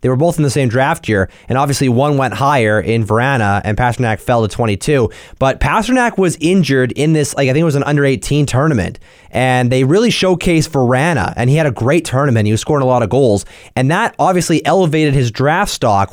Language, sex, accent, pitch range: English, male, American, 120-165 Hz